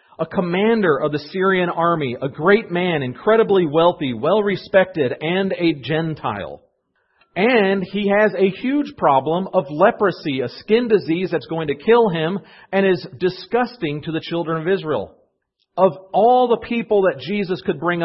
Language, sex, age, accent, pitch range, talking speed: English, male, 40-59, American, 145-190 Hz, 155 wpm